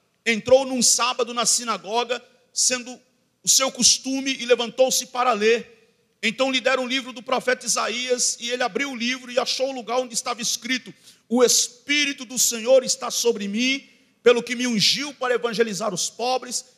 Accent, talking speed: Brazilian, 170 wpm